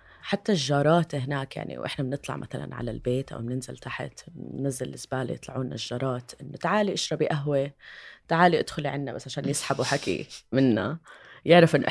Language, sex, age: Arabic, female, 20-39